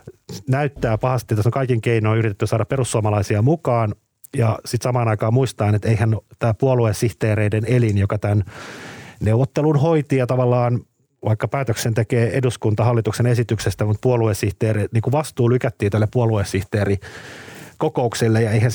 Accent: native